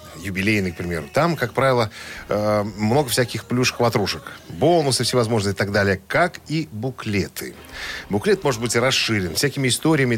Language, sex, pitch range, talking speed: Russian, male, 105-140 Hz, 140 wpm